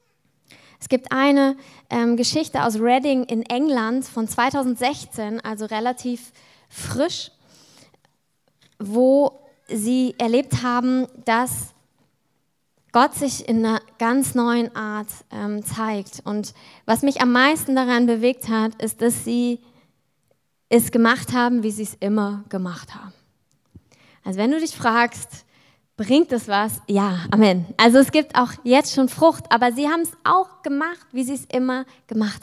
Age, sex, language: 20-39, female, German